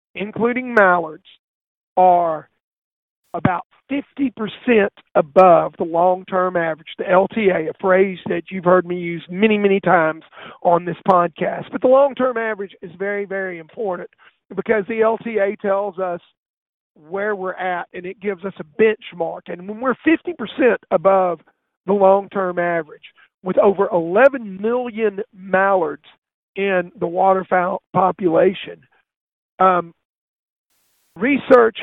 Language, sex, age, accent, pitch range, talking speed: English, male, 50-69, American, 180-225 Hz, 120 wpm